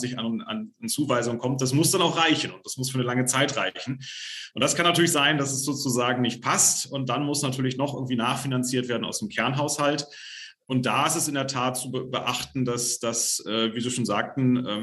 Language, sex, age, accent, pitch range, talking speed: German, male, 40-59, German, 115-145 Hz, 225 wpm